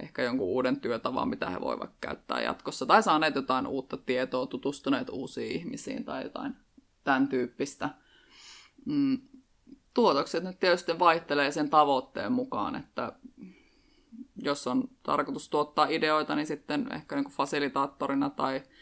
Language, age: Finnish, 20-39